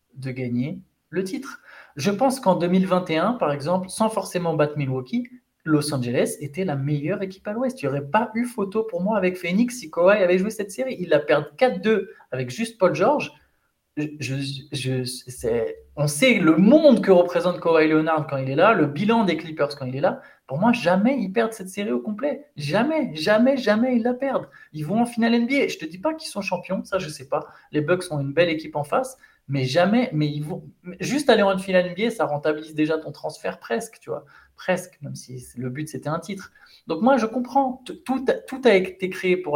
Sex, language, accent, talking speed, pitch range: male, French, French, 220 wpm, 145-210 Hz